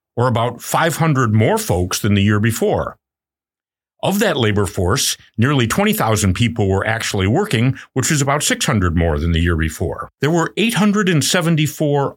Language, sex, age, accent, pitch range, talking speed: English, male, 50-69, American, 90-145 Hz, 155 wpm